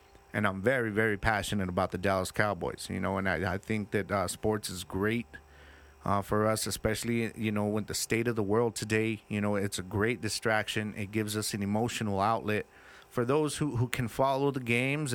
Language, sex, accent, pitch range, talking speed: English, male, American, 100-120 Hz, 210 wpm